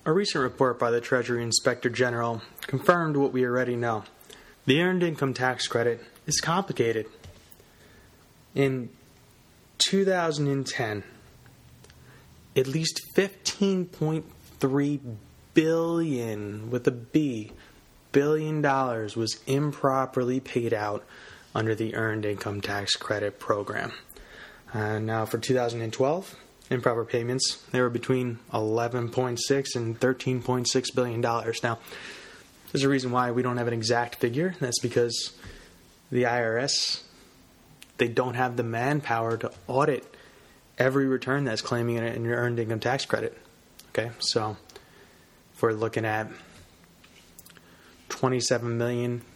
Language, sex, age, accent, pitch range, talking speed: English, male, 20-39, American, 115-135 Hz, 125 wpm